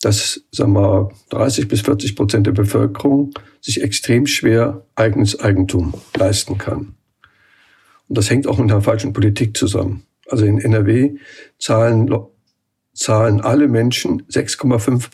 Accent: German